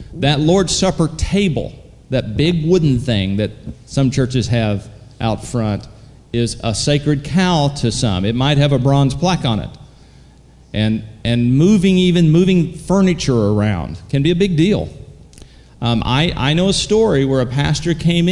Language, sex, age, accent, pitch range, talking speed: English, male, 40-59, American, 120-155 Hz, 165 wpm